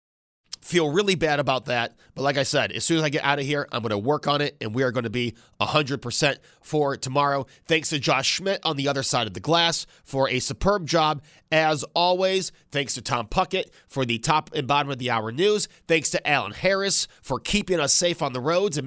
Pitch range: 140-185 Hz